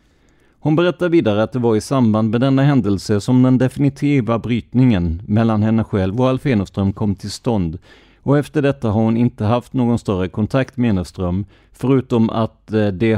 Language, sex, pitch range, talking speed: Swedish, male, 100-130 Hz, 180 wpm